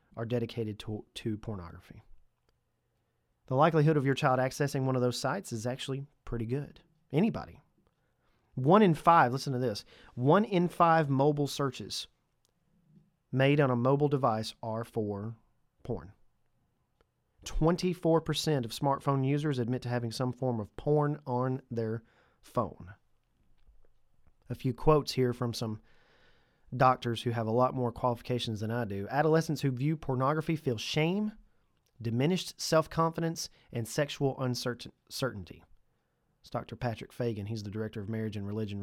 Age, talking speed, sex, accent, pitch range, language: 40-59, 140 wpm, male, American, 115-145 Hz, English